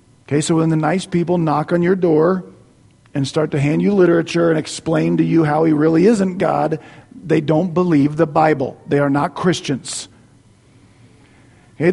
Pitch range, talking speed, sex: 160-250 Hz, 175 wpm, male